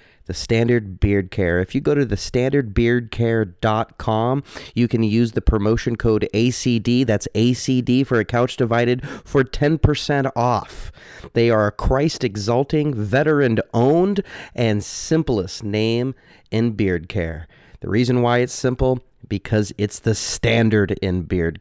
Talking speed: 130 wpm